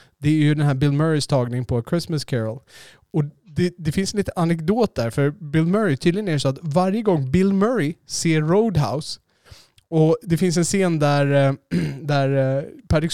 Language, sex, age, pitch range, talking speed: Swedish, male, 20-39, 135-170 Hz, 185 wpm